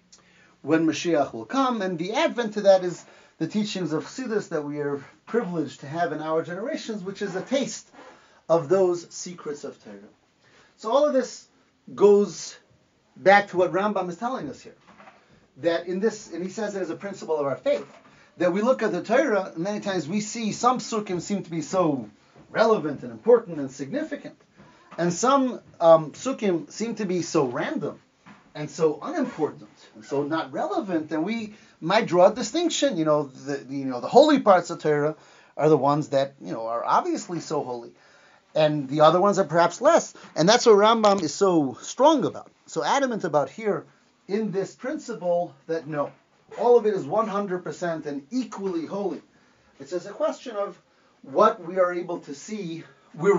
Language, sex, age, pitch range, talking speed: English, male, 40-59, 155-220 Hz, 185 wpm